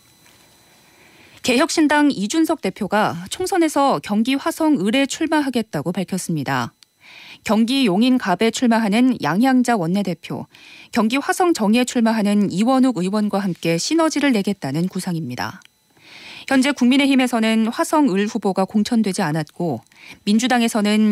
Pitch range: 195-255 Hz